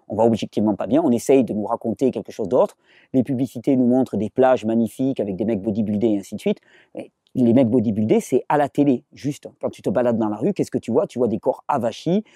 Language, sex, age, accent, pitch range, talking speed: French, male, 40-59, French, 125-170 Hz, 250 wpm